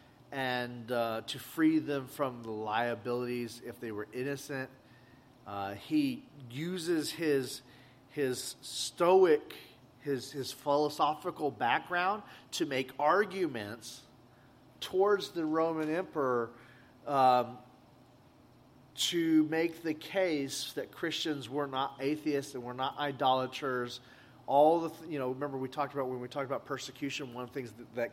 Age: 40-59